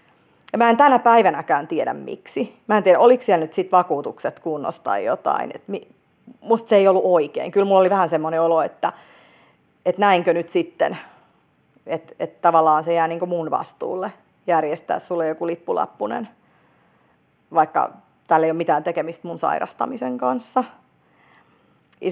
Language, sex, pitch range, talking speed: Finnish, female, 165-220 Hz, 155 wpm